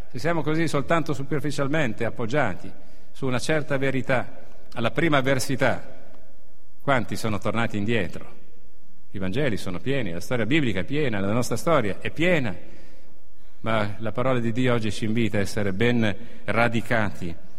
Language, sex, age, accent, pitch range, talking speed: Italian, male, 50-69, native, 100-150 Hz, 145 wpm